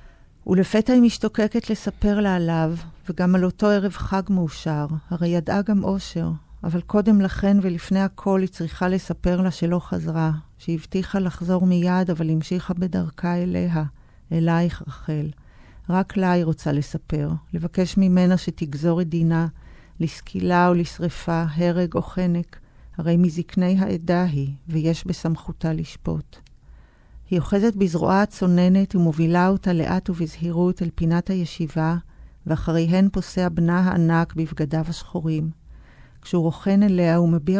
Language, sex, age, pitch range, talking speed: Hebrew, female, 40-59, 165-185 Hz, 130 wpm